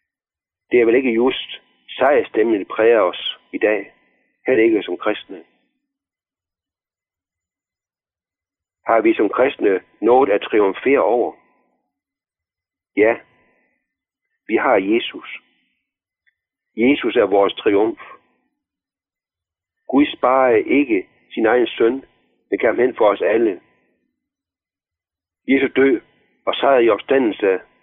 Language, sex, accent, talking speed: Danish, male, native, 105 wpm